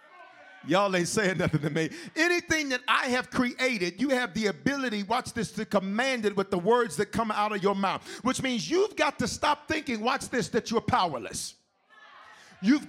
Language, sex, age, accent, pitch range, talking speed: English, male, 40-59, American, 225-285 Hz, 195 wpm